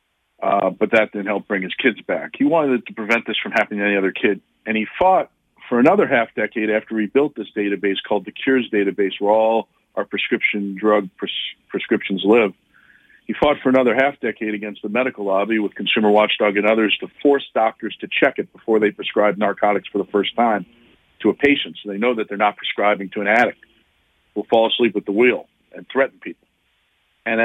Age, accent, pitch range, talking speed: 50-69, American, 100-125 Hz, 210 wpm